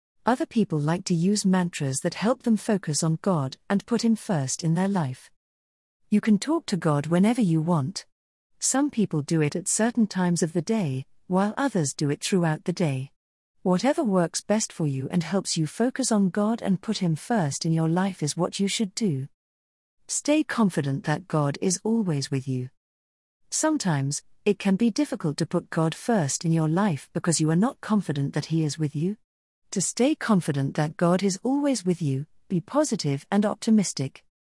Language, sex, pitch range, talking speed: English, female, 150-210 Hz, 190 wpm